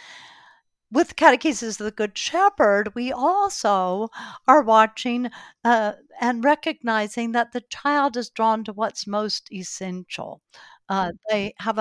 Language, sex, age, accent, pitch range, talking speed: English, female, 60-79, American, 200-255 Hz, 130 wpm